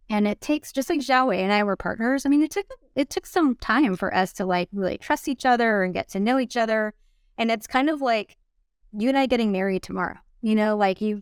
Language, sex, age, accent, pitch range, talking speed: English, female, 20-39, American, 200-240 Hz, 250 wpm